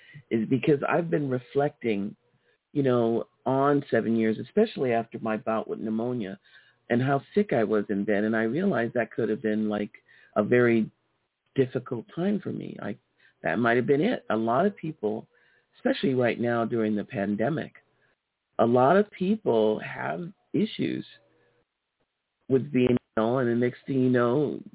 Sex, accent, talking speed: male, American, 165 wpm